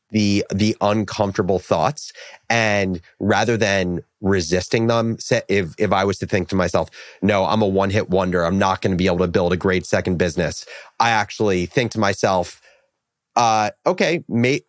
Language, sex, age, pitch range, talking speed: English, male, 30-49, 95-115 Hz, 170 wpm